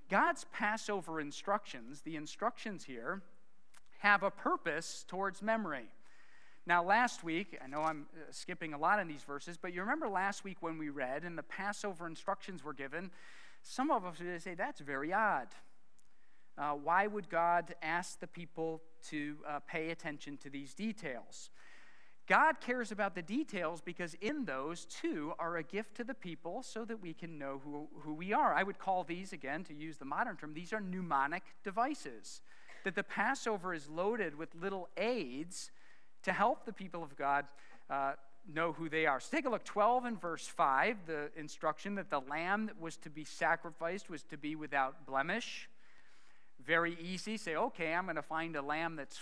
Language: English